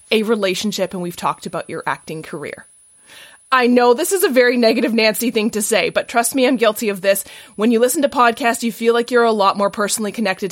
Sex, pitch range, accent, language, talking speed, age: female, 195-255 Hz, American, English, 235 wpm, 20-39